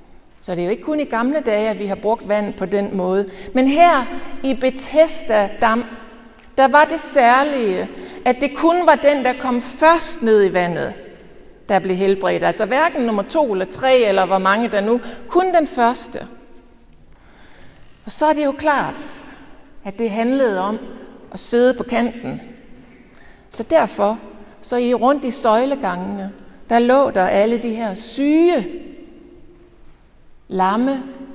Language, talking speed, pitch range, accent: Danish, 155 wpm, 210-270 Hz, native